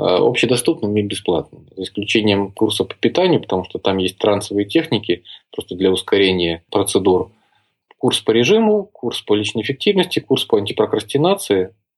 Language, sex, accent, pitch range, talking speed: Russian, male, native, 105-135 Hz, 140 wpm